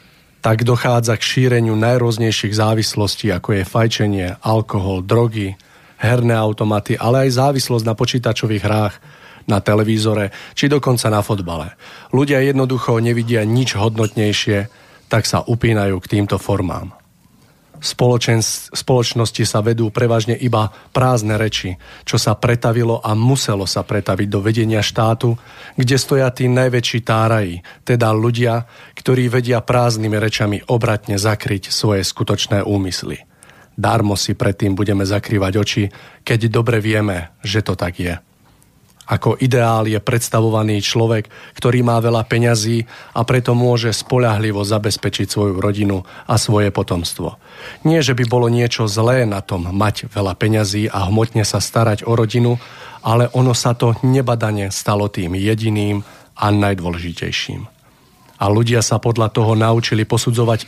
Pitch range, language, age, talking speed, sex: 105-120 Hz, Slovak, 40-59, 135 wpm, male